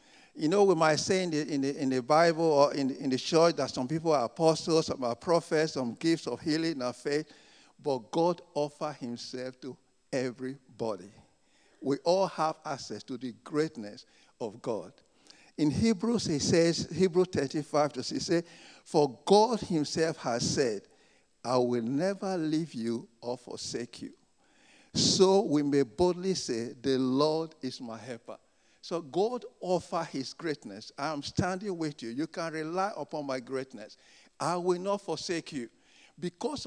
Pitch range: 135-185 Hz